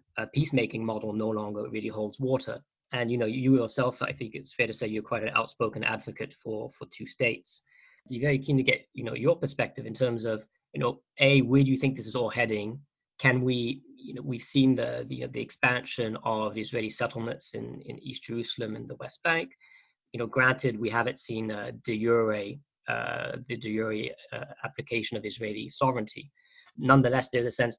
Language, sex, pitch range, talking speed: English, male, 110-130 Hz, 205 wpm